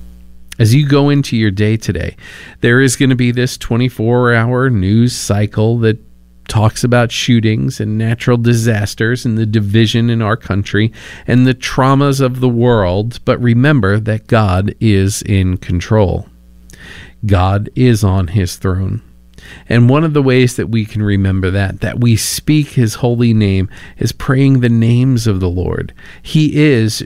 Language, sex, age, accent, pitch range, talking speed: English, male, 50-69, American, 95-125 Hz, 160 wpm